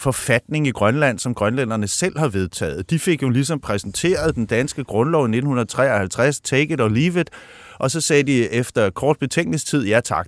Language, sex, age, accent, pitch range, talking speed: Danish, male, 30-49, native, 110-150 Hz, 185 wpm